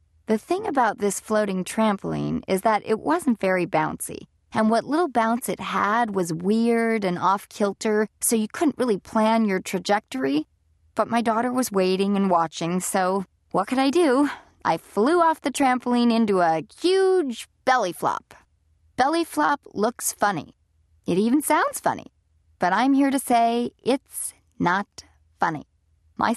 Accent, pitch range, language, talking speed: American, 170-245 Hz, English, 155 wpm